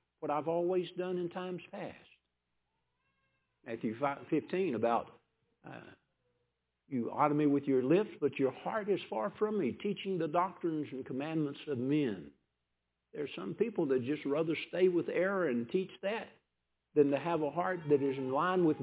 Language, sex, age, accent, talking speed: English, male, 60-79, American, 170 wpm